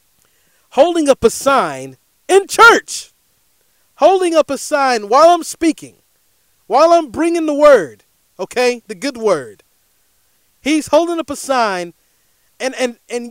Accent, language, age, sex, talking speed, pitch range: American, English, 30-49, male, 135 wpm, 195-300 Hz